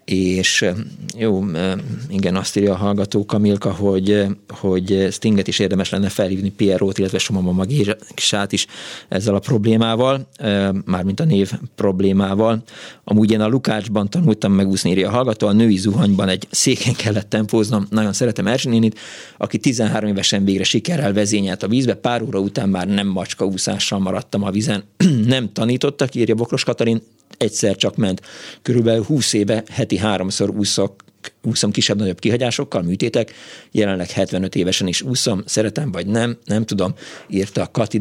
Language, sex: Hungarian, male